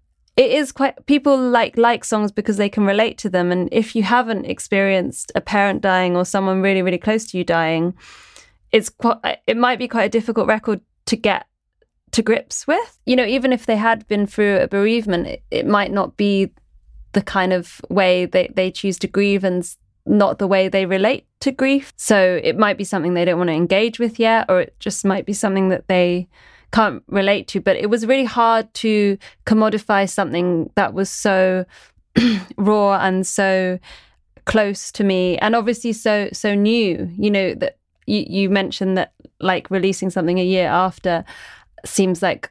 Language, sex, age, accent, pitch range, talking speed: English, female, 20-39, British, 185-220 Hz, 190 wpm